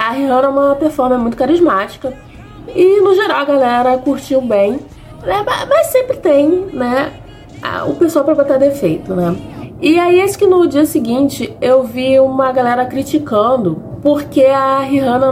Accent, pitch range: Brazilian, 225-300 Hz